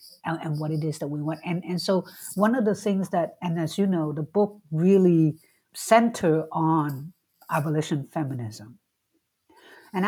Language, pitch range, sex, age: English, 160-215 Hz, female, 60-79